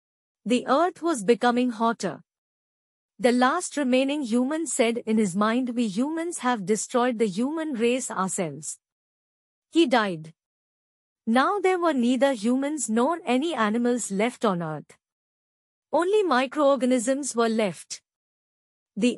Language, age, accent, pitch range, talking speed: Hindi, 50-69, native, 215-285 Hz, 120 wpm